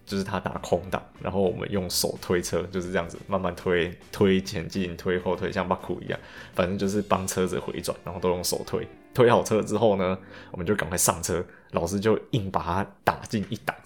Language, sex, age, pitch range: Chinese, male, 20-39, 90-105 Hz